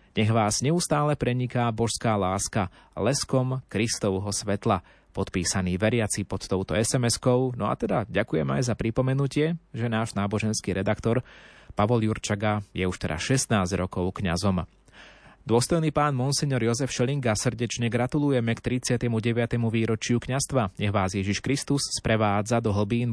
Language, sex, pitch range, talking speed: Slovak, male, 105-125 Hz, 130 wpm